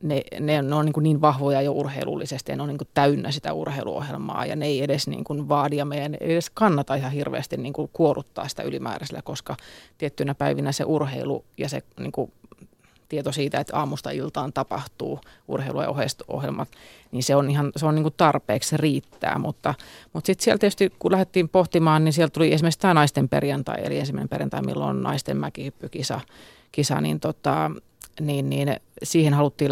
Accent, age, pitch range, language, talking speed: native, 30-49, 140-155 Hz, Finnish, 185 wpm